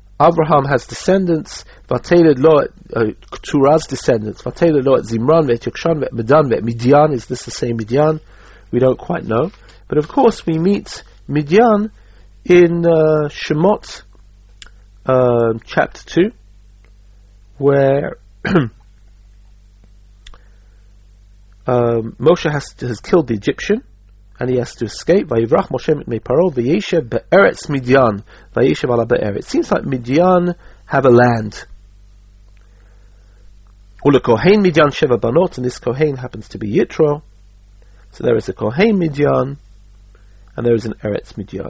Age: 40-59